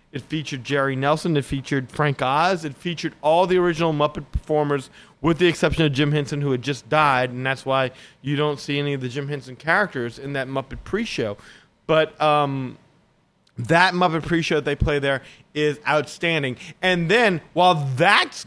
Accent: American